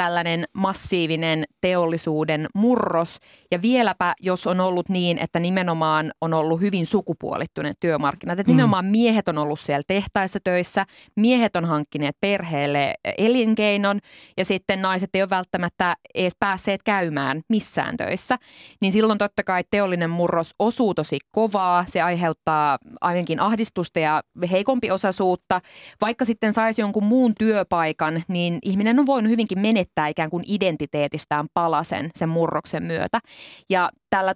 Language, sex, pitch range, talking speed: Finnish, female, 165-210 Hz, 135 wpm